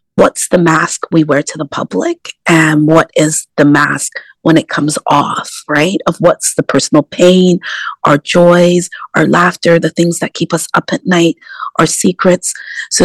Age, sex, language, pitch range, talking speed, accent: 30-49, female, English, 160-200 Hz, 175 wpm, American